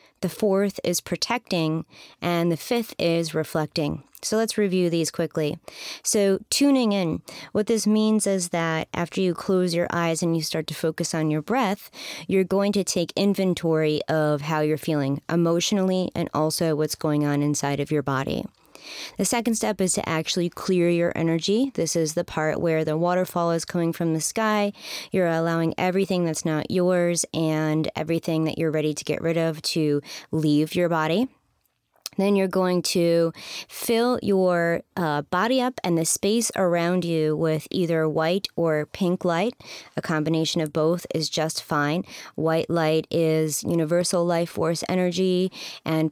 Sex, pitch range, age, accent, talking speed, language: female, 160-185 Hz, 30-49, American, 170 wpm, English